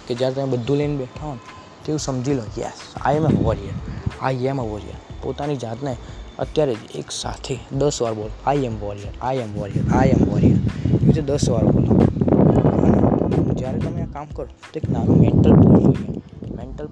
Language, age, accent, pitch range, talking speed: Gujarati, 20-39, native, 110-140 Hz, 190 wpm